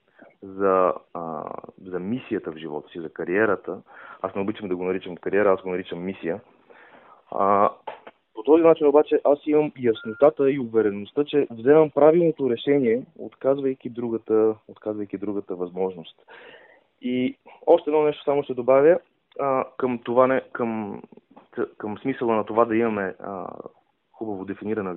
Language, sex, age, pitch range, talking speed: Bulgarian, male, 20-39, 110-140 Hz, 145 wpm